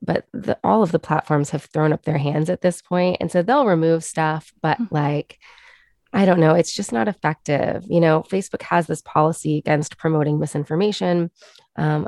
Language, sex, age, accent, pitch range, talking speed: English, female, 20-39, American, 155-180 Hz, 190 wpm